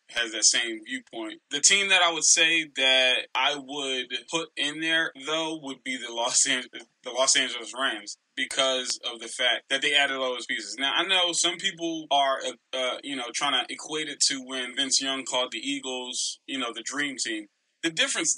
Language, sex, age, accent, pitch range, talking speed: English, male, 20-39, American, 130-165 Hz, 200 wpm